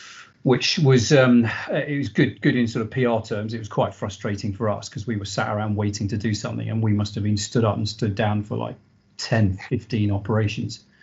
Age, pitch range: 40-59, 105-120 Hz